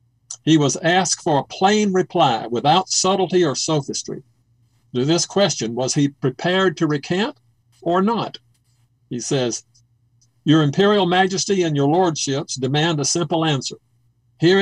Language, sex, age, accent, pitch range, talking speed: English, male, 50-69, American, 125-180 Hz, 140 wpm